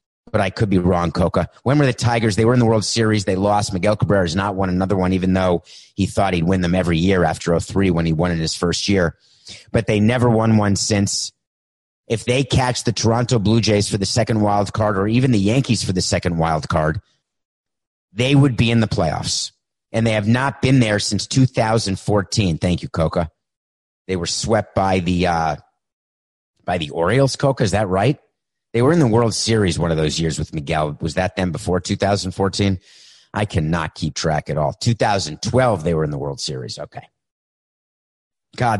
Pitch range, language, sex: 90-120 Hz, English, male